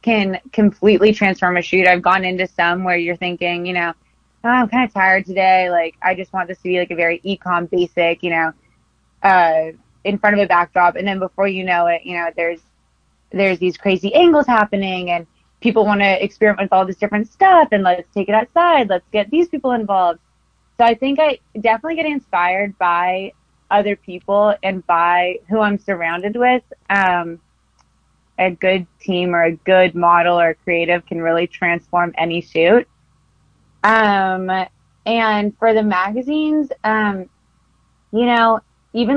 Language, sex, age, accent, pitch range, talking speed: English, female, 20-39, American, 175-220 Hz, 170 wpm